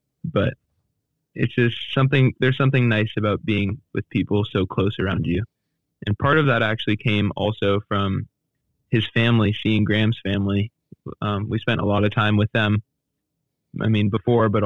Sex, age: male, 20-39